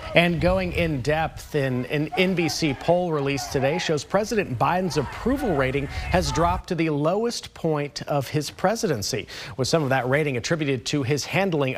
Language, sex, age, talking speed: English, male, 40-59, 170 wpm